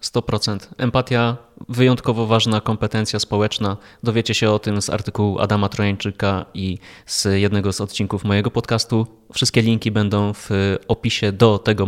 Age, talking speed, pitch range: 20-39, 140 wpm, 105-120 Hz